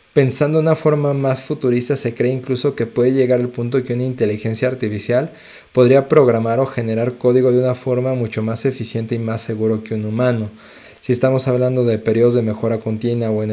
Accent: Mexican